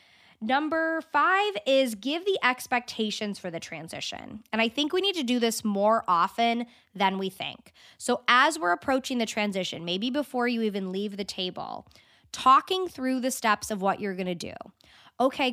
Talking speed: 180 wpm